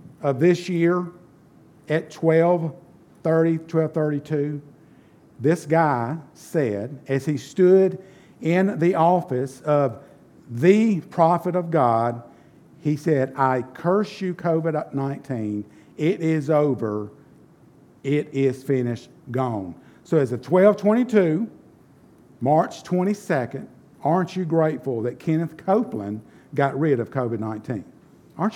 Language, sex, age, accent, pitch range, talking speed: English, male, 50-69, American, 140-195 Hz, 105 wpm